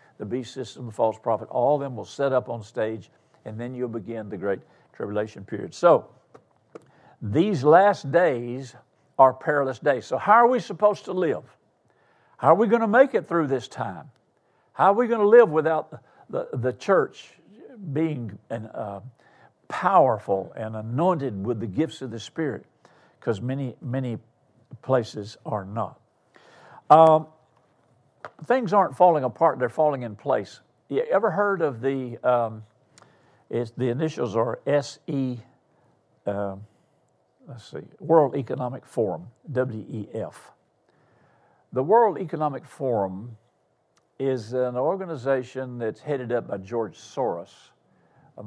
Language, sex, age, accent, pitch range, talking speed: English, male, 60-79, American, 115-155 Hz, 140 wpm